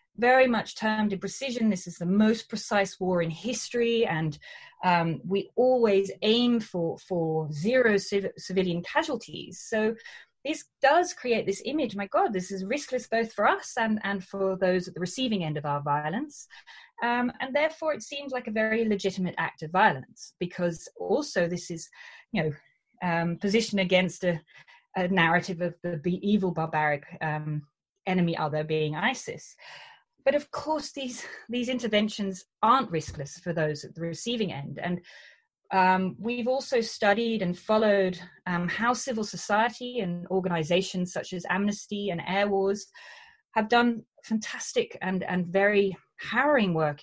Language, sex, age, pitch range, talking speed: English, female, 30-49, 175-235 Hz, 155 wpm